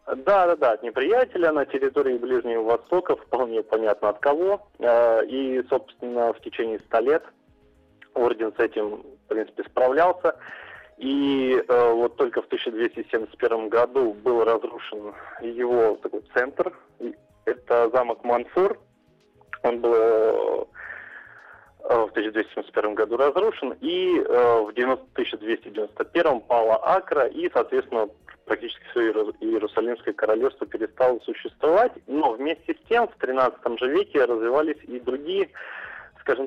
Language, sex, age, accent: Russian, male, 20-39, native